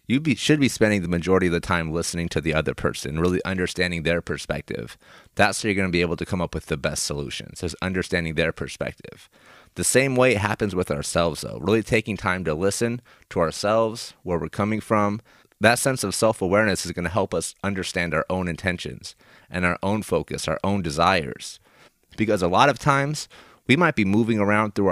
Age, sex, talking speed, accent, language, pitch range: 30-49, male, 210 wpm, American, English, 85-105 Hz